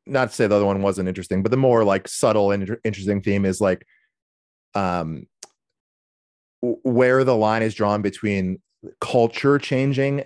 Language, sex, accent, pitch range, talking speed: English, male, American, 100-125 Hz, 165 wpm